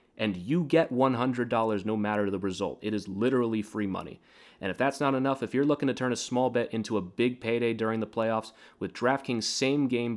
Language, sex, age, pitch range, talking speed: English, male, 30-49, 100-125 Hz, 210 wpm